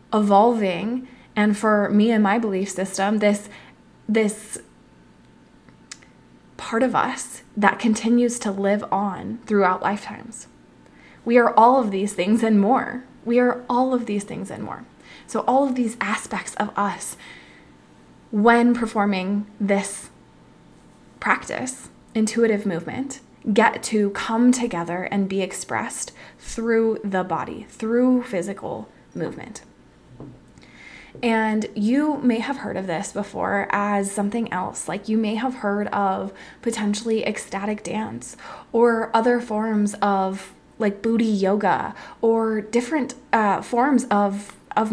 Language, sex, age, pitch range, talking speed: English, female, 20-39, 200-230 Hz, 125 wpm